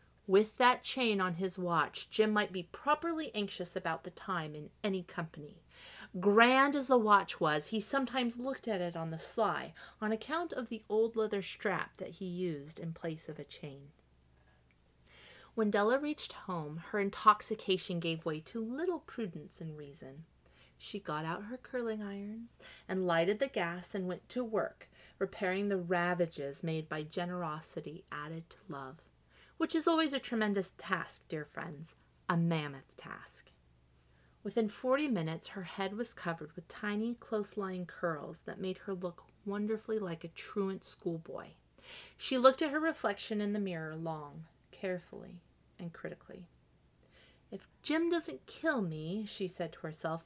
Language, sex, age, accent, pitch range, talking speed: English, female, 30-49, American, 165-245 Hz, 160 wpm